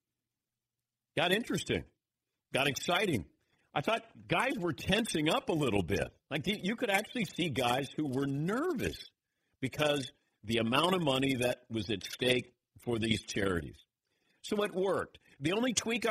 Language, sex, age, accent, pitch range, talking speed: English, male, 50-69, American, 120-170 Hz, 150 wpm